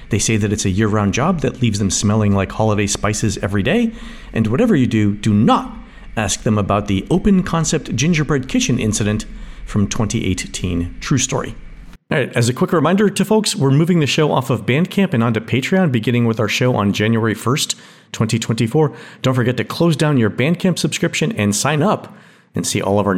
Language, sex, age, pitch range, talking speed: English, male, 40-59, 105-165 Hz, 195 wpm